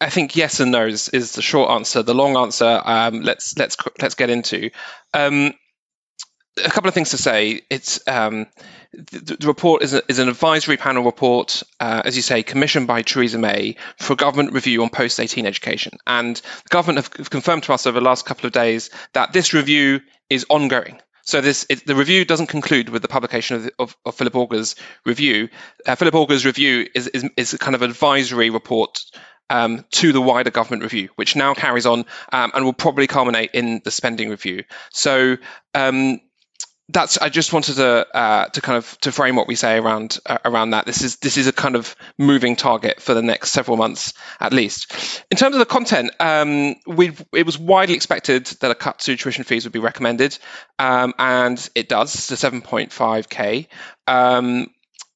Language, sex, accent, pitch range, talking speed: English, male, British, 120-145 Hz, 200 wpm